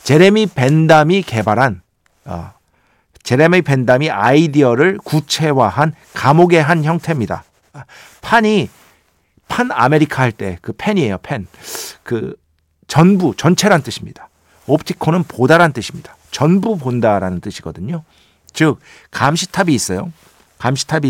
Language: Korean